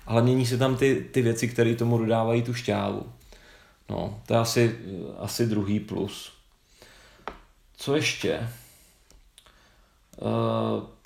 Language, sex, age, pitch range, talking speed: Czech, male, 30-49, 115-135 Hz, 120 wpm